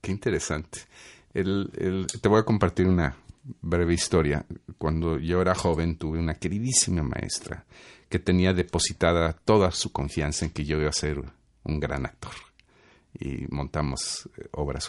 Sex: male